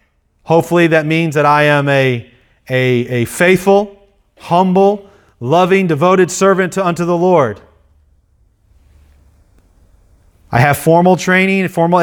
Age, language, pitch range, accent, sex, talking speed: 30-49, English, 110-150 Hz, American, male, 115 wpm